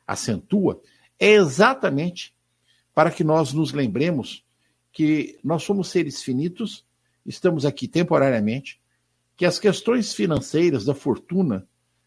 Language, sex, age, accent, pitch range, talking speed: Portuguese, male, 60-79, Brazilian, 115-185 Hz, 110 wpm